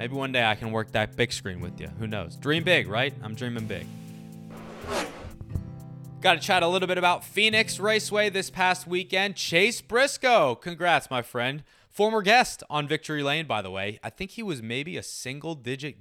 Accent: American